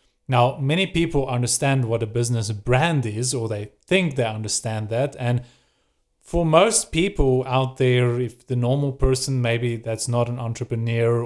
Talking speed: 160 wpm